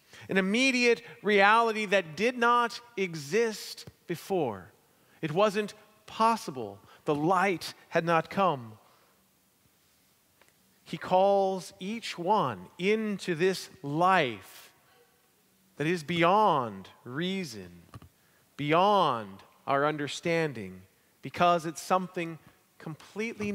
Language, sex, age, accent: English, male, 40-59, American